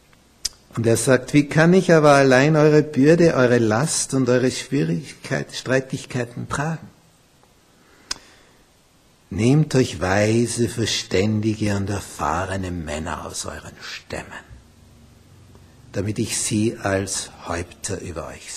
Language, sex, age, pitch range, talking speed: German, male, 60-79, 105-135 Hz, 110 wpm